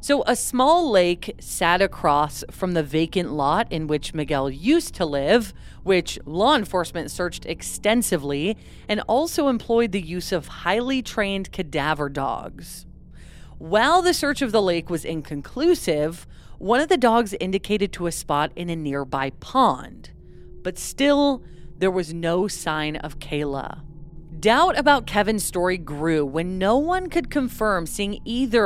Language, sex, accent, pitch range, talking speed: English, female, American, 160-225 Hz, 150 wpm